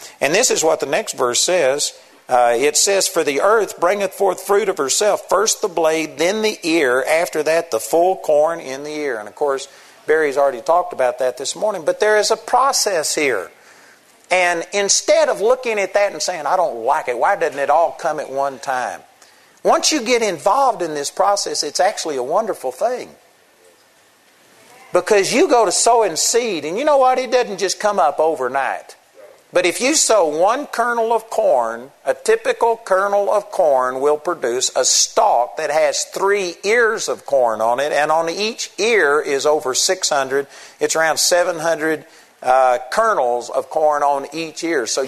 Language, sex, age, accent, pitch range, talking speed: English, male, 50-69, American, 150-230 Hz, 190 wpm